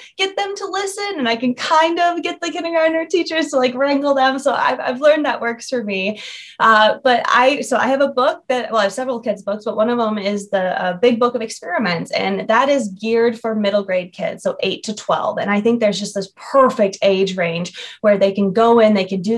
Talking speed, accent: 250 wpm, American